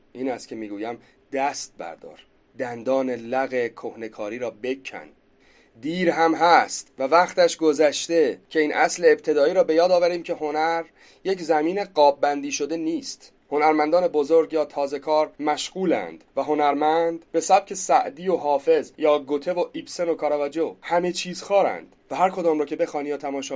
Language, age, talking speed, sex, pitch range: Persian, 40-59, 155 wpm, male, 130-165 Hz